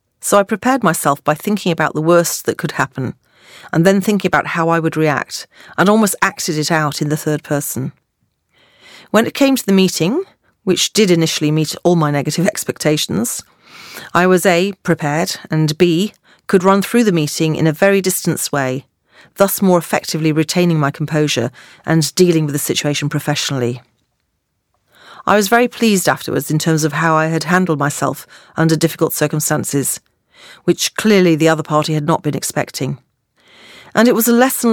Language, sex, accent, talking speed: English, female, British, 175 wpm